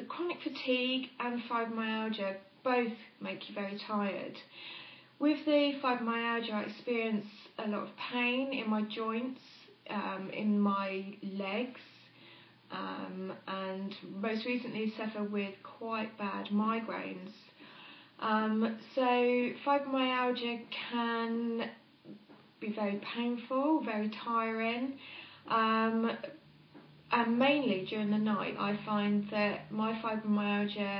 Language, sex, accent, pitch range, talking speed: English, female, British, 205-240 Hz, 105 wpm